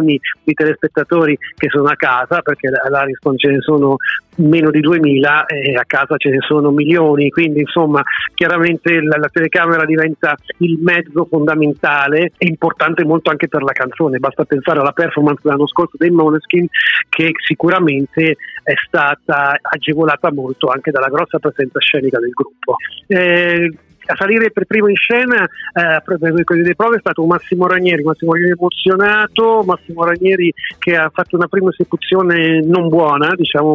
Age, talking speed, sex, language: 40-59, 155 wpm, male, Italian